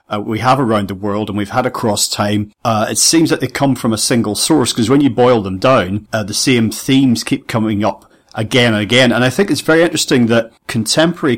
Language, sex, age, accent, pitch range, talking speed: English, male, 40-59, British, 105-130 Hz, 235 wpm